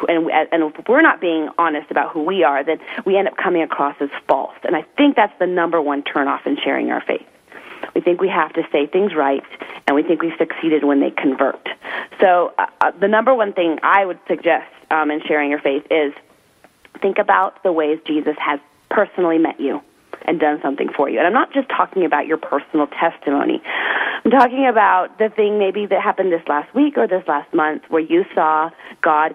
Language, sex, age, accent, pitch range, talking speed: English, female, 30-49, American, 155-195 Hz, 210 wpm